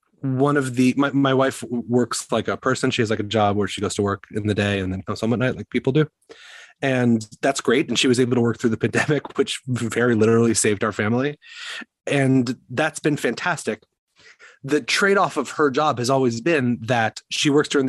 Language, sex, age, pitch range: English, male, 30-49, 110-135 Hz